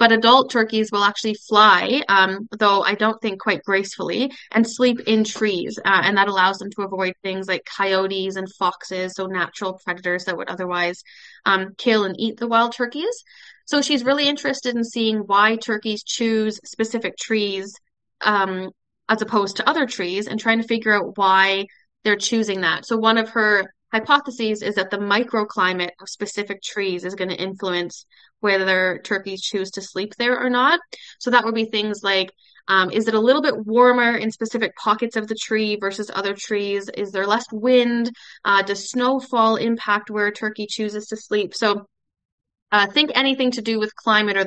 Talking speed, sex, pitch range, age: 185 wpm, female, 190-225 Hz, 20-39